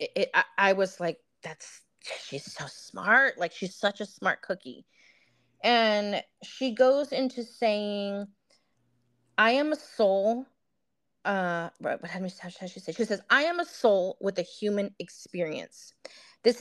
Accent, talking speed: American, 150 wpm